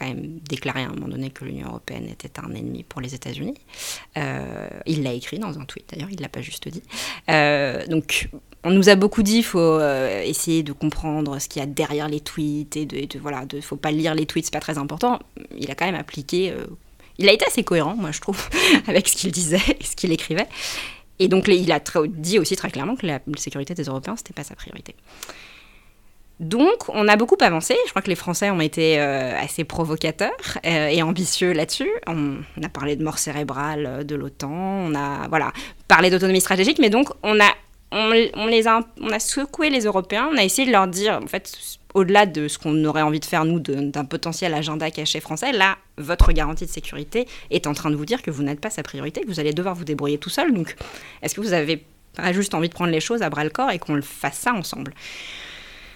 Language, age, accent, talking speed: French, 20-39, French, 235 wpm